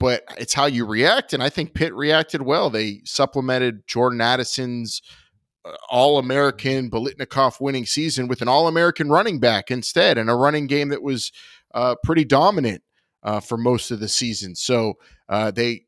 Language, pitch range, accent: English, 115-140 Hz, American